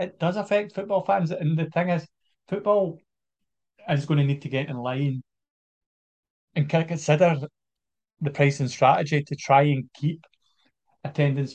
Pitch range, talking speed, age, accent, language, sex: 140-165 Hz, 145 wpm, 30-49, British, English, male